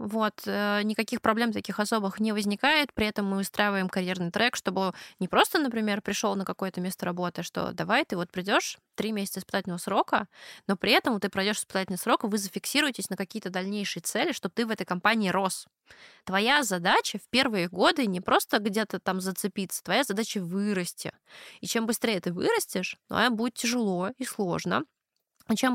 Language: Russian